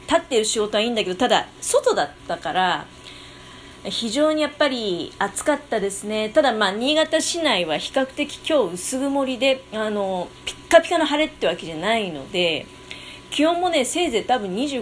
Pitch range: 185-275 Hz